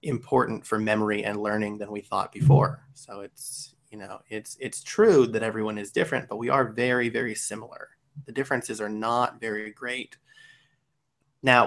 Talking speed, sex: 170 wpm, male